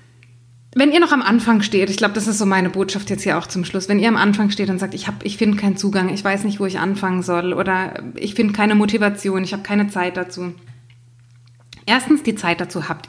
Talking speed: 245 wpm